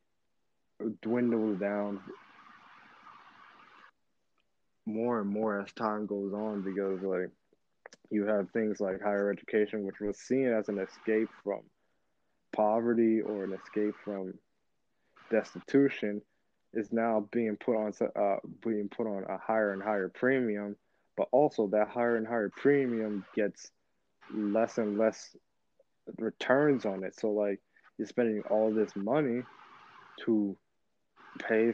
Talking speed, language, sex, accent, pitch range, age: 125 wpm, English, male, American, 100-115 Hz, 20-39